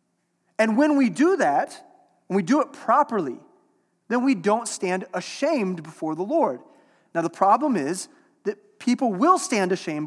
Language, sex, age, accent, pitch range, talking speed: English, male, 30-49, American, 175-250 Hz, 160 wpm